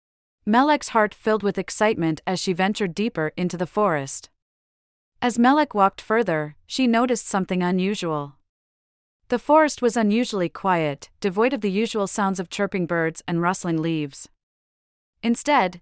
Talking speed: 140 wpm